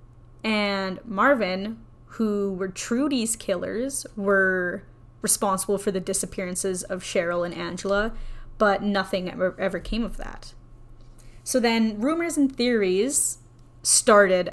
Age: 10-29